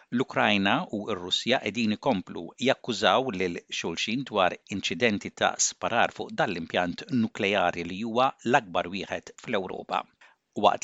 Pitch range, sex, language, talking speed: 125-180 Hz, male, English, 105 wpm